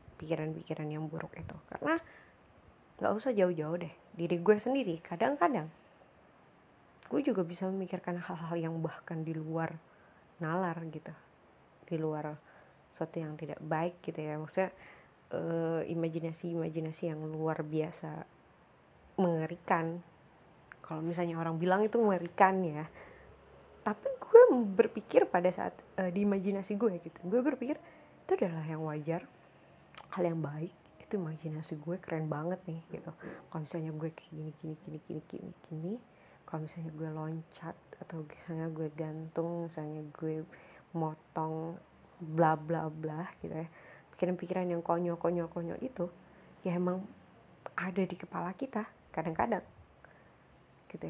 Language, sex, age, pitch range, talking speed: Indonesian, female, 30-49, 160-180 Hz, 130 wpm